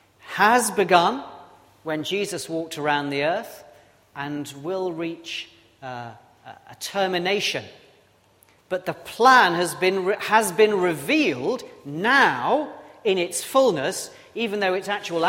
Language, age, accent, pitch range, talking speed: English, 40-59, British, 125-185 Hz, 120 wpm